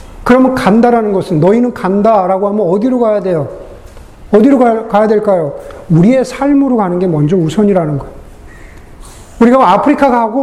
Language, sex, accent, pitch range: Korean, male, native, 195-265 Hz